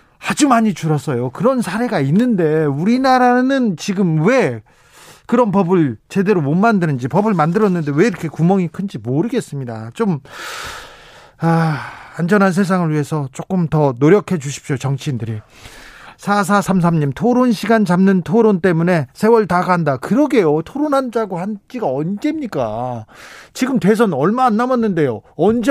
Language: Korean